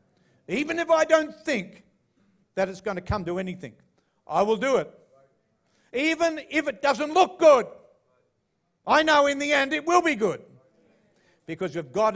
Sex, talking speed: male, 170 wpm